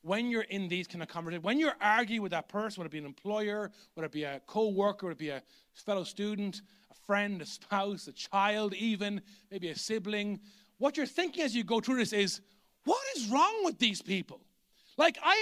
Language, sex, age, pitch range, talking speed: English, male, 30-49, 205-290 Hz, 220 wpm